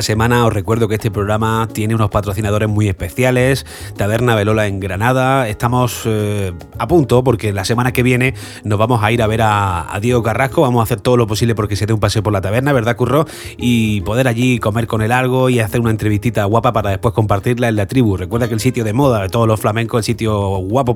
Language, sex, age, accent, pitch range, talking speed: Spanish, male, 30-49, Spanish, 105-125 Hz, 235 wpm